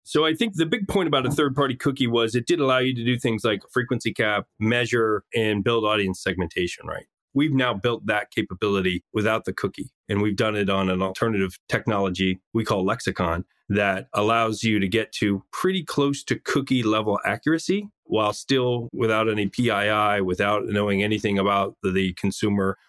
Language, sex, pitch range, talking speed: English, male, 95-125 Hz, 180 wpm